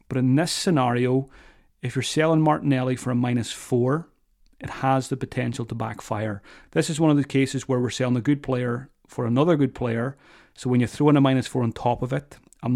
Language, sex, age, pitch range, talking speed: English, male, 30-49, 120-140 Hz, 220 wpm